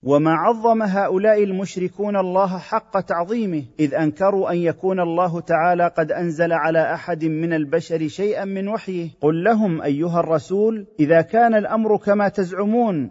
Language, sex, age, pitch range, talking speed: Arabic, male, 40-59, 175-230 Hz, 140 wpm